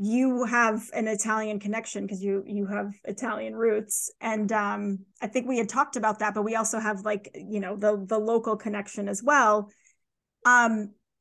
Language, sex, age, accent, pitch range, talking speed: English, female, 30-49, American, 205-235 Hz, 180 wpm